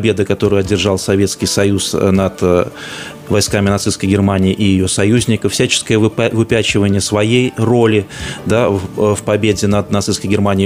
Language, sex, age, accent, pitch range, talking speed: Russian, male, 20-39, native, 105-120 Hz, 125 wpm